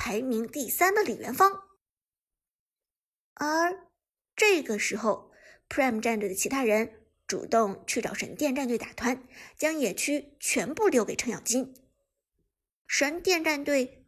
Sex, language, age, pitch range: male, Chinese, 50-69, 240-325 Hz